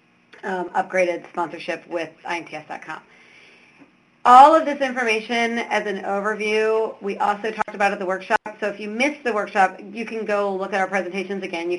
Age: 40-59